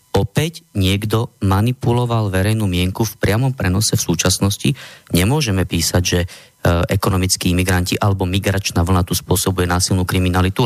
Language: Slovak